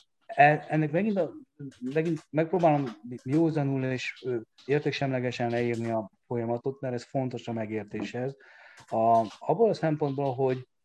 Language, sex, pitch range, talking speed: Hungarian, male, 110-145 Hz, 120 wpm